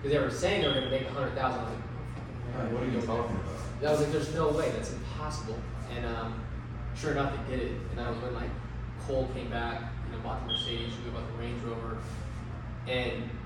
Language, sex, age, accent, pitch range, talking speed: English, male, 20-39, American, 115-125 Hz, 230 wpm